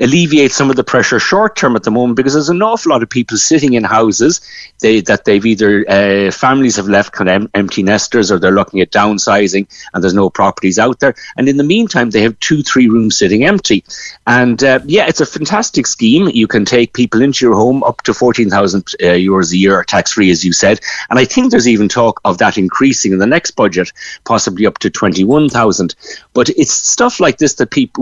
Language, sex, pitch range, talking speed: English, male, 100-130 Hz, 225 wpm